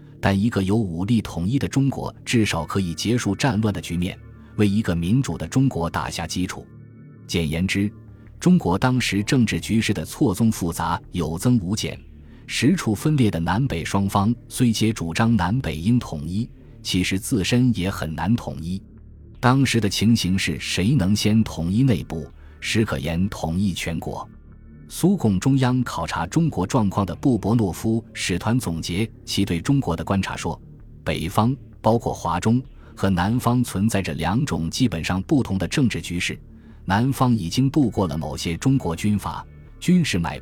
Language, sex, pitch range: Chinese, male, 85-120 Hz